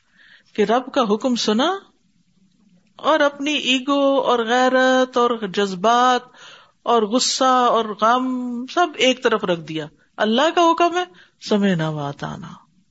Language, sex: Urdu, female